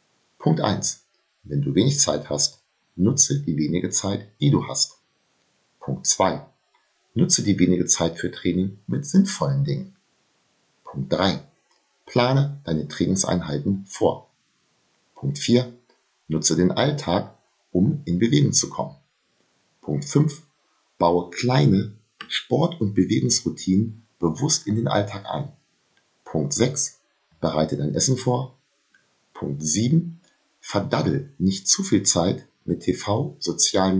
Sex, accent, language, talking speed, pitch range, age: male, German, German, 120 wpm, 80-125 Hz, 50-69